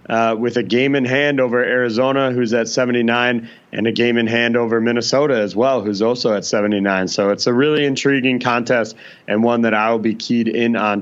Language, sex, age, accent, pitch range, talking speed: English, male, 30-49, American, 115-135 Hz, 210 wpm